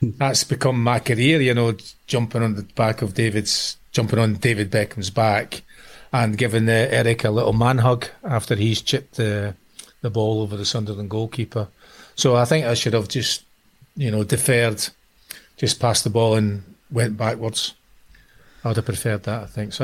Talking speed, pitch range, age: 180 wpm, 105-120 Hz, 40-59